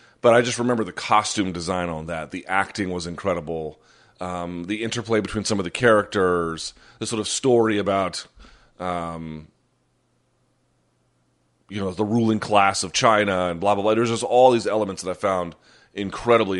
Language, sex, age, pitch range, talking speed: English, male, 30-49, 85-115 Hz, 170 wpm